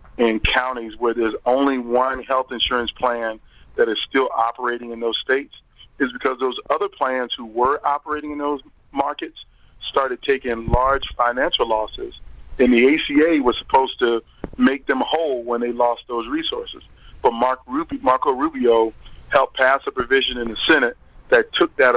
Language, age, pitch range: English, 40-59, 120-140 Hz